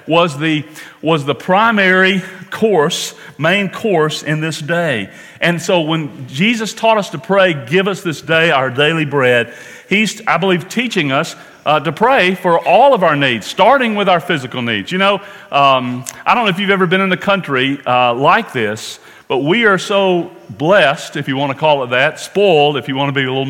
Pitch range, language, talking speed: 130-185 Hz, English, 205 wpm